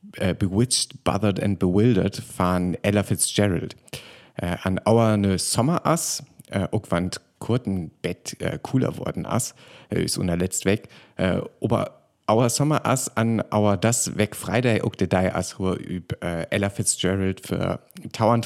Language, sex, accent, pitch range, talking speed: German, male, German, 95-125 Hz, 145 wpm